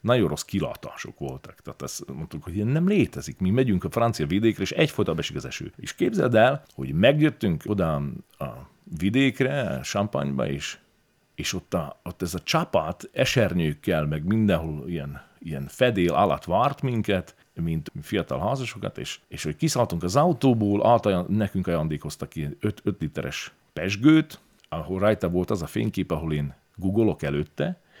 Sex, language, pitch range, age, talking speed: male, Hungarian, 80-120 Hz, 40-59, 155 wpm